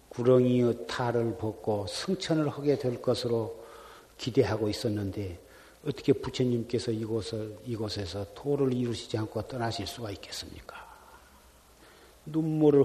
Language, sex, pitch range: Korean, male, 115-145 Hz